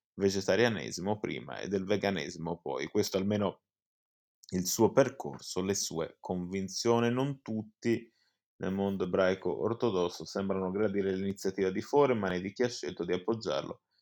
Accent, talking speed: native, 135 wpm